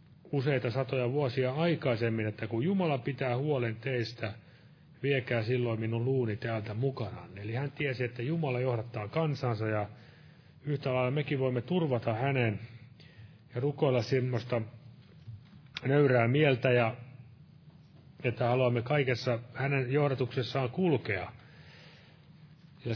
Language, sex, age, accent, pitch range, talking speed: Finnish, male, 30-49, native, 115-140 Hz, 110 wpm